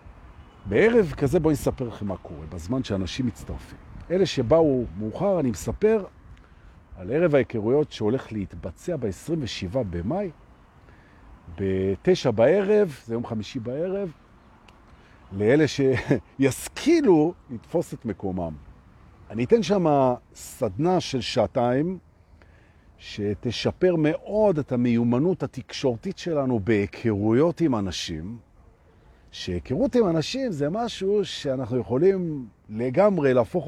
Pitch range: 95-155 Hz